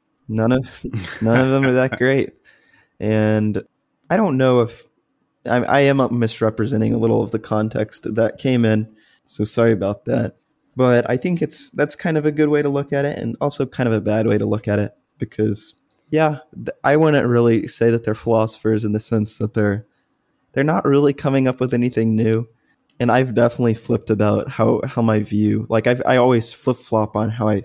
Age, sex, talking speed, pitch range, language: 20-39, male, 205 wpm, 110-125 Hz, English